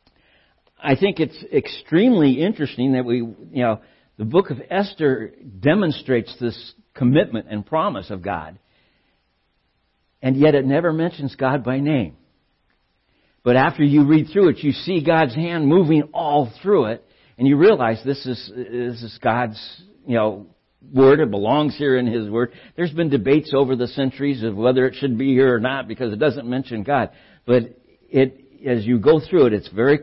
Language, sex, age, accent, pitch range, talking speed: English, male, 60-79, American, 110-140 Hz, 175 wpm